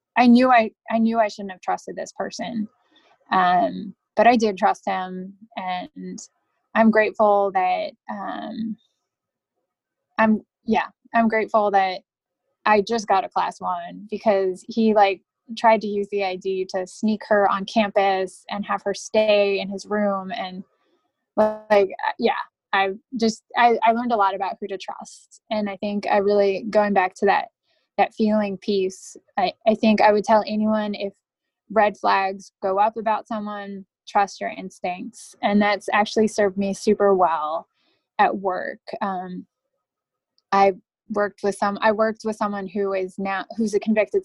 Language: English